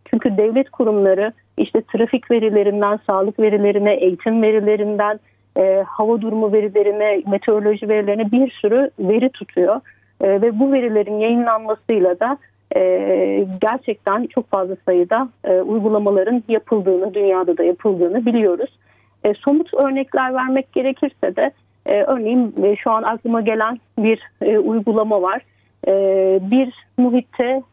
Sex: female